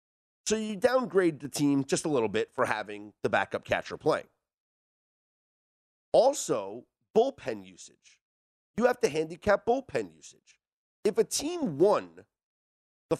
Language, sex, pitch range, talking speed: English, male, 165-270 Hz, 130 wpm